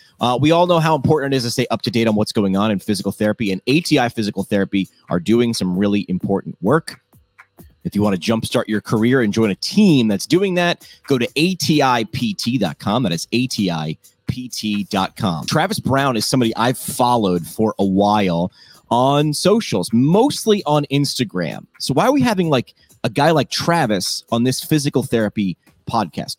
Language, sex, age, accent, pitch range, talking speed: English, male, 30-49, American, 105-150 Hz, 180 wpm